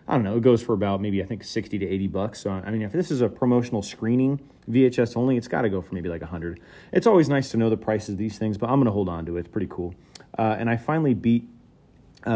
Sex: male